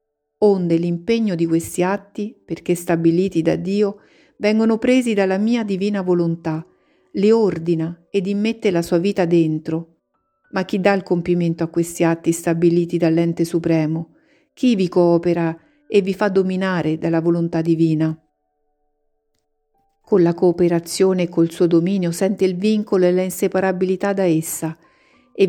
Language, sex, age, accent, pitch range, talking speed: Italian, female, 50-69, native, 165-200 Hz, 140 wpm